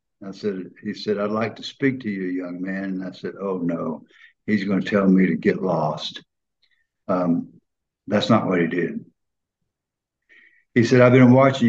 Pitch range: 100-135 Hz